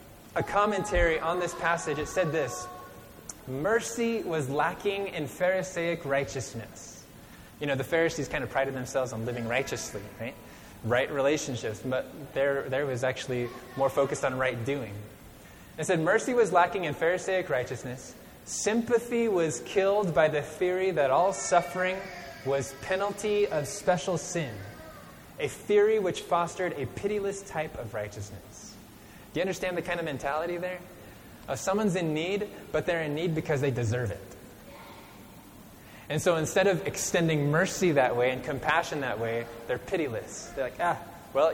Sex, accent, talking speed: male, American, 155 wpm